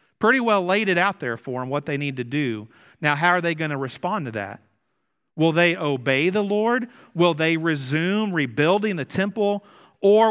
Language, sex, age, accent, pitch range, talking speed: English, male, 40-59, American, 145-200 Hz, 200 wpm